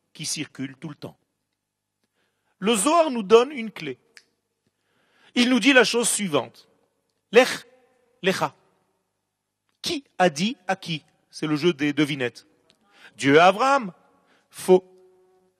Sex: male